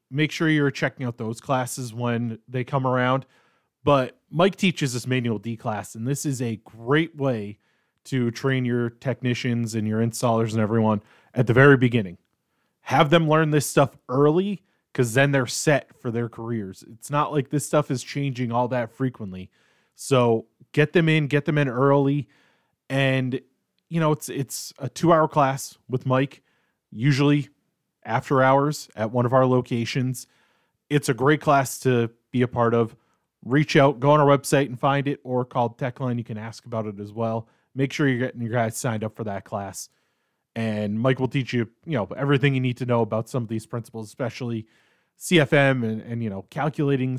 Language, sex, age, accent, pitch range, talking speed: English, male, 20-39, American, 115-140 Hz, 190 wpm